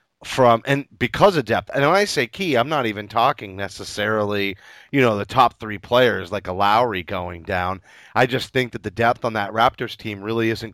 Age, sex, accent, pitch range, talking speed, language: 30-49, male, American, 110-130 Hz, 210 wpm, English